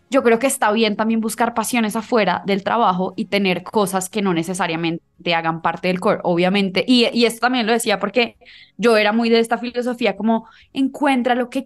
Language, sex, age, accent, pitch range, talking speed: Spanish, female, 20-39, Colombian, 205-250 Hz, 205 wpm